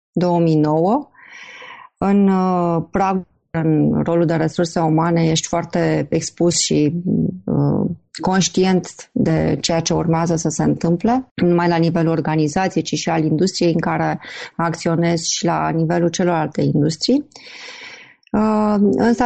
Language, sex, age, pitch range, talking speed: Romanian, female, 30-49, 170-210 Hz, 120 wpm